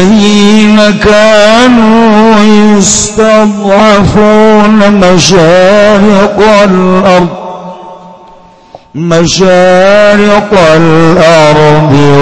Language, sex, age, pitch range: Indonesian, male, 50-69, 140-180 Hz